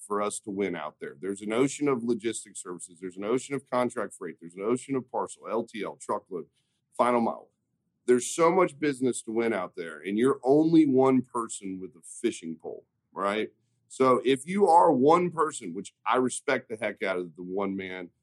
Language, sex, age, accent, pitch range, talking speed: English, male, 40-59, American, 105-145 Hz, 200 wpm